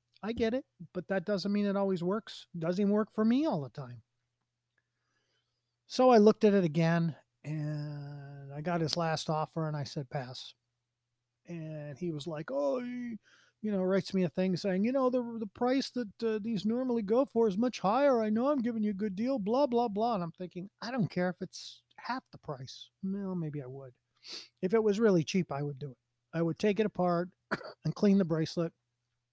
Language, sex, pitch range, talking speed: English, male, 145-210 Hz, 210 wpm